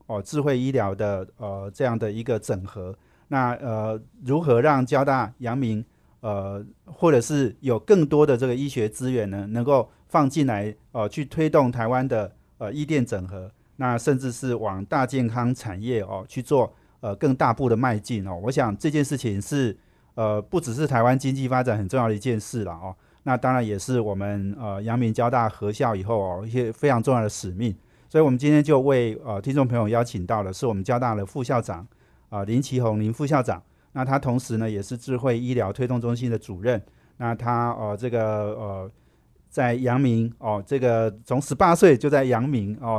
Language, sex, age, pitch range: Chinese, male, 40-59, 105-130 Hz